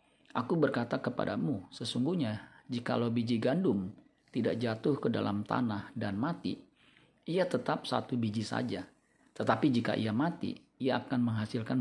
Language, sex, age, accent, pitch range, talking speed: Indonesian, male, 40-59, native, 110-130 Hz, 130 wpm